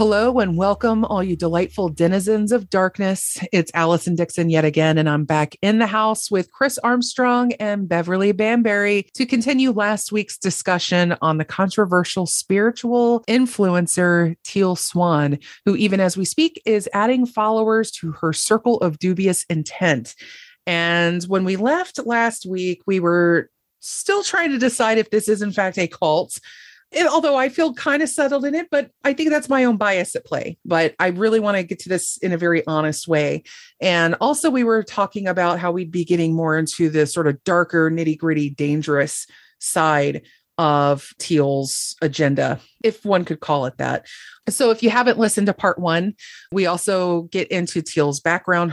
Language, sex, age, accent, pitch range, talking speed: English, female, 30-49, American, 165-225 Hz, 175 wpm